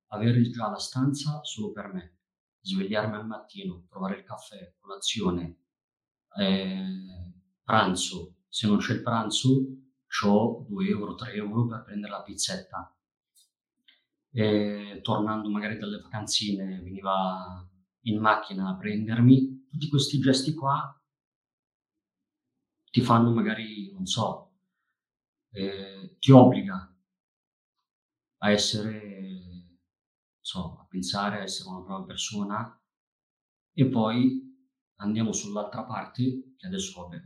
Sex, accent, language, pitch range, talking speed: male, native, Italian, 95-130 Hz, 115 wpm